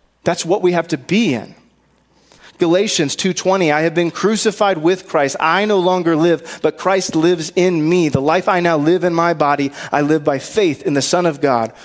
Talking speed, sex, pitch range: 210 wpm, male, 145-185 Hz